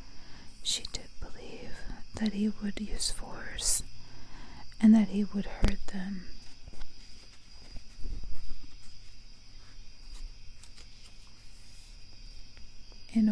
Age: 40-59